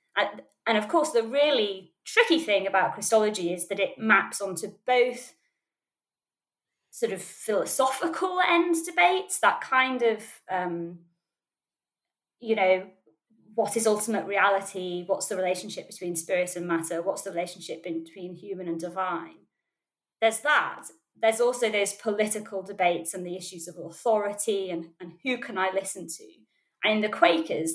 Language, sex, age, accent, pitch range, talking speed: English, female, 20-39, British, 180-230 Hz, 145 wpm